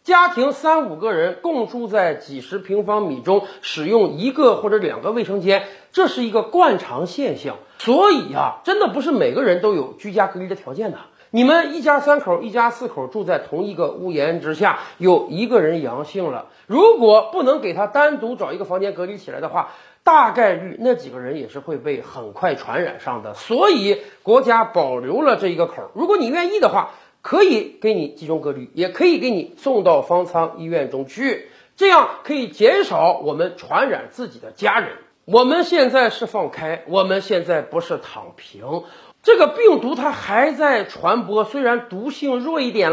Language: Chinese